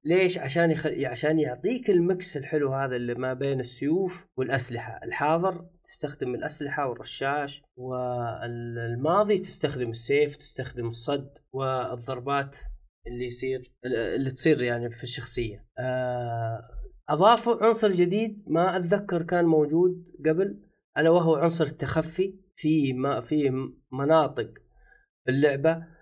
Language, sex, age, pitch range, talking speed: Arabic, male, 30-49, 130-175 Hz, 110 wpm